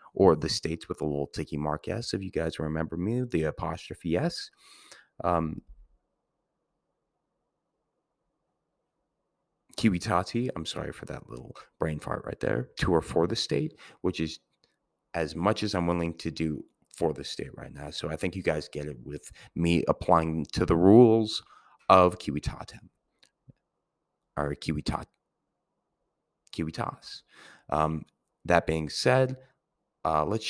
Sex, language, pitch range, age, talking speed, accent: male, English, 80-105 Hz, 30-49, 140 wpm, American